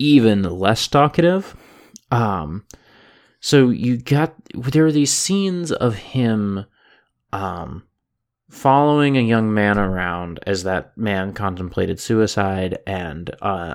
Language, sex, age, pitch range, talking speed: English, male, 20-39, 95-125 Hz, 115 wpm